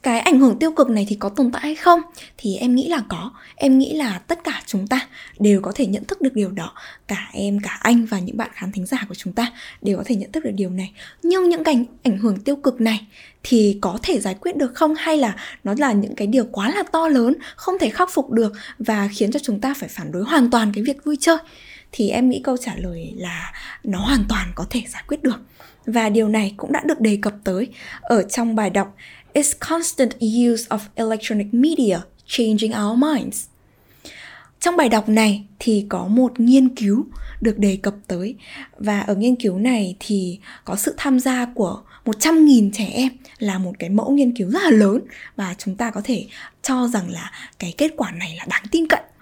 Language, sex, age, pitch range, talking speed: Vietnamese, female, 10-29, 205-275 Hz, 230 wpm